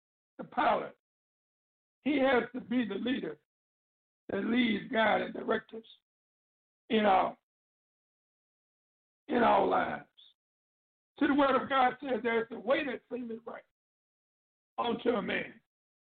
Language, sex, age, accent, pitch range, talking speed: English, male, 60-79, American, 225-275 Hz, 125 wpm